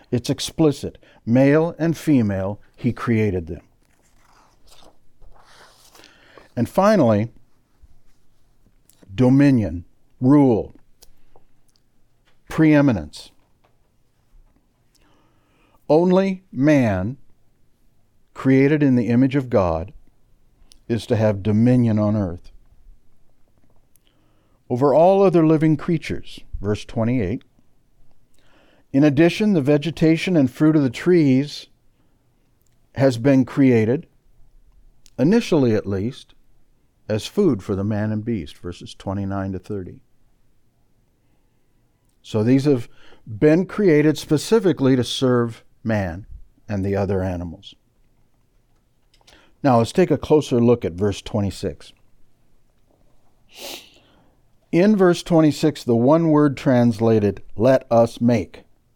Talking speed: 95 wpm